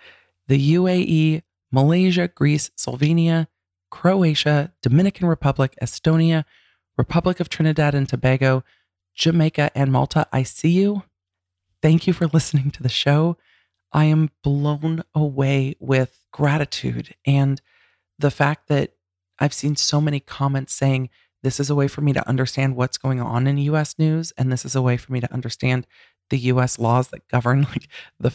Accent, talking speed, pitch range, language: American, 155 wpm, 130-155 Hz, English